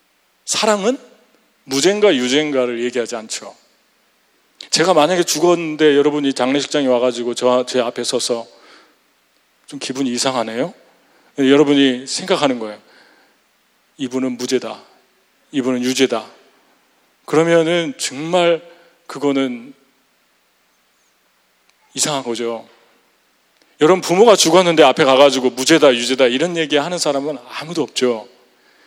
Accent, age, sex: Korean, 40-59, male